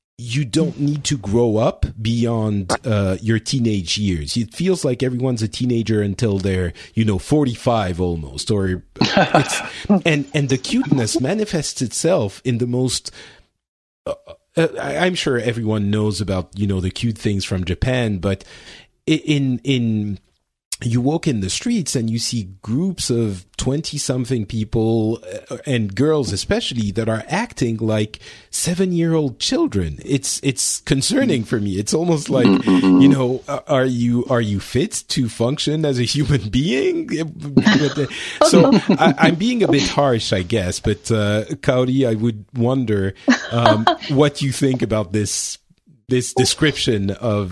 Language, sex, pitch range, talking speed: English, male, 105-145 Hz, 155 wpm